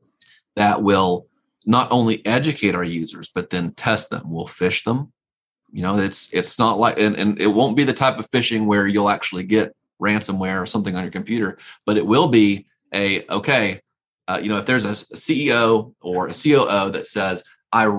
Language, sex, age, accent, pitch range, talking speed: English, male, 30-49, American, 100-120 Hz, 195 wpm